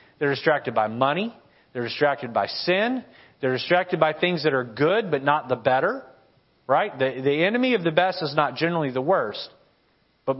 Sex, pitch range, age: male, 130-175 Hz, 40-59